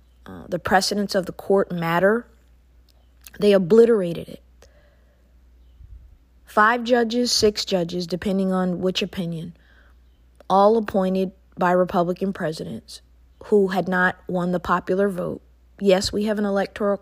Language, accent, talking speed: English, American, 125 wpm